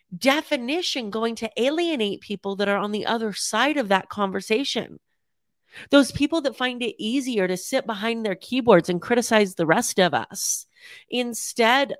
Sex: female